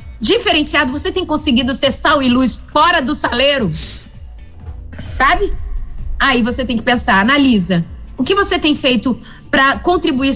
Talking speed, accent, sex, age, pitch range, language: 145 wpm, Brazilian, female, 30-49, 225-320 Hz, Portuguese